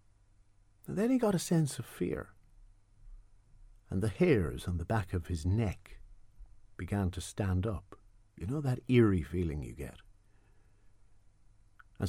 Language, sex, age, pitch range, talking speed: English, male, 50-69, 95-115 Hz, 140 wpm